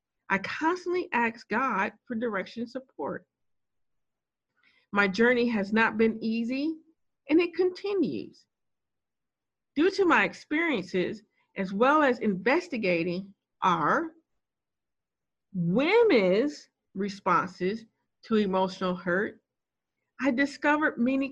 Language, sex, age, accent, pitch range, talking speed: English, female, 50-69, American, 205-295 Hz, 95 wpm